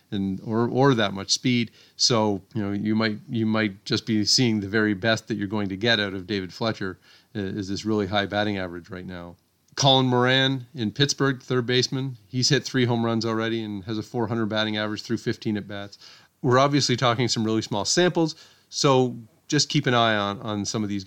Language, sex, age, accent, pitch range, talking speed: English, male, 30-49, American, 100-125 Hz, 215 wpm